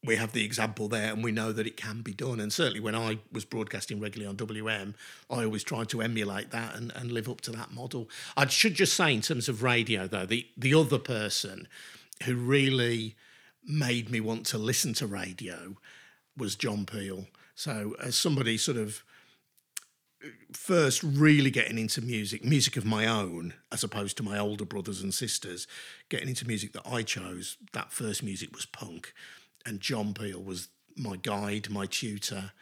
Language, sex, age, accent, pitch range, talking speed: English, male, 50-69, British, 105-125 Hz, 185 wpm